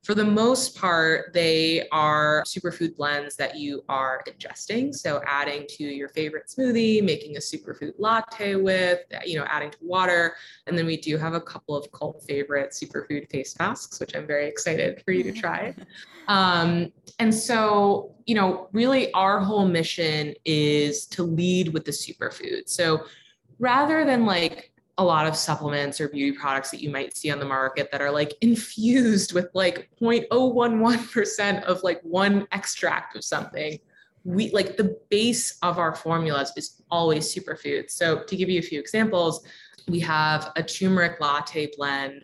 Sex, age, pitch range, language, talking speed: female, 20-39, 145-195 Hz, English, 170 wpm